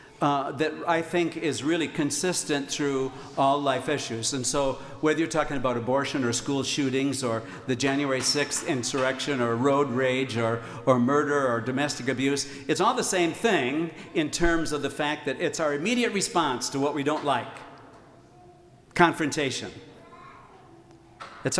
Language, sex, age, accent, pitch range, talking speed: English, male, 60-79, American, 130-170 Hz, 160 wpm